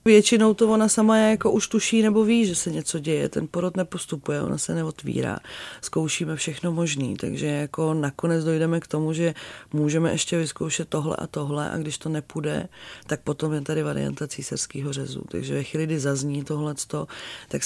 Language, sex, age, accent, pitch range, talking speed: Czech, female, 30-49, native, 145-160 Hz, 185 wpm